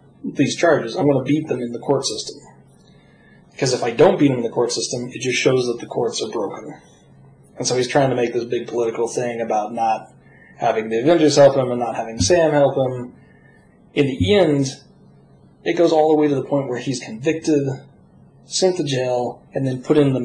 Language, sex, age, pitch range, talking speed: English, male, 30-49, 125-150 Hz, 220 wpm